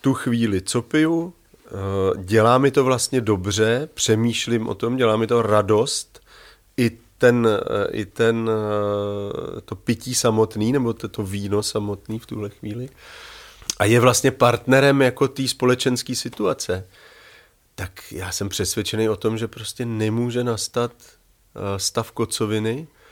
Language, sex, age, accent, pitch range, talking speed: Czech, male, 40-59, native, 110-130 Hz, 125 wpm